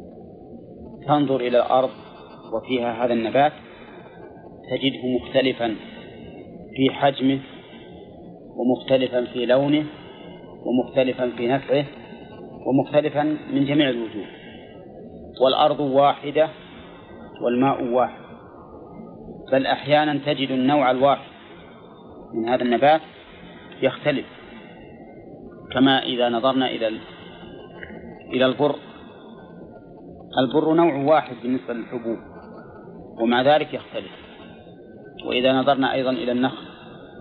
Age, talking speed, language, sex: 40-59, 85 wpm, Arabic, male